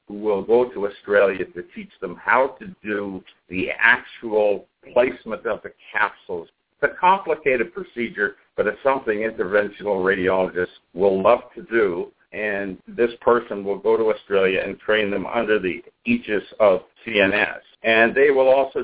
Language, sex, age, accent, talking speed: English, male, 60-79, American, 155 wpm